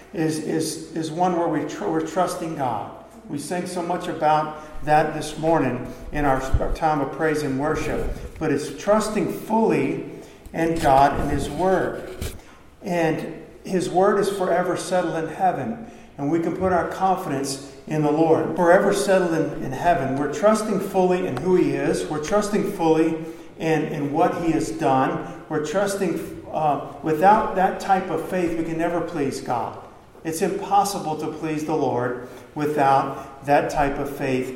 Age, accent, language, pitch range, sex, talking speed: 50-69, American, English, 140-175 Hz, male, 170 wpm